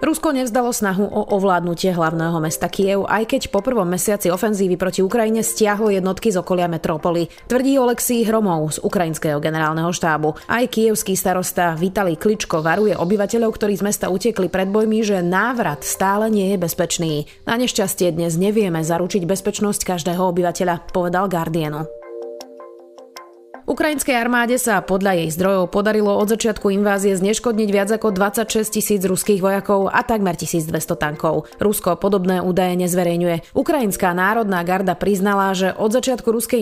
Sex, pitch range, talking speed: female, 180-215 Hz, 150 wpm